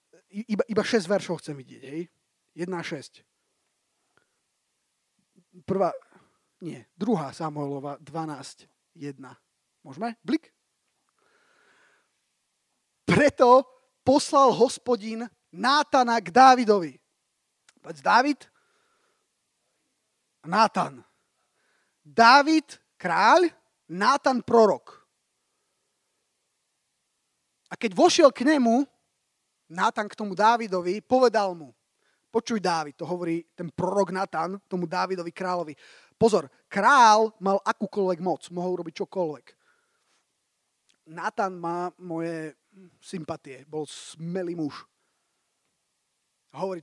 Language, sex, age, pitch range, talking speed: Slovak, male, 30-49, 170-245 Hz, 80 wpm